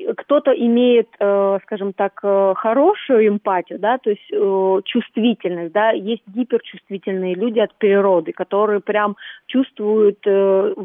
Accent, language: native, Russian